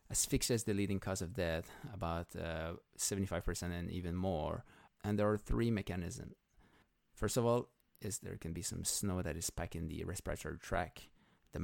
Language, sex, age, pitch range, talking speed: English, male, 30-49, 85-105 Hz, 175 wpm